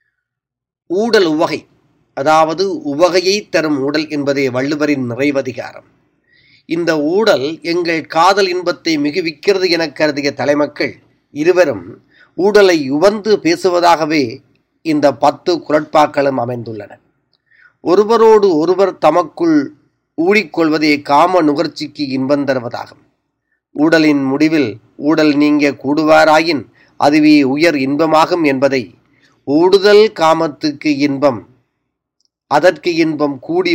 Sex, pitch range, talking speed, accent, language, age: male, 140-180 Hz, 85 wpm, native, Tamil, 30-49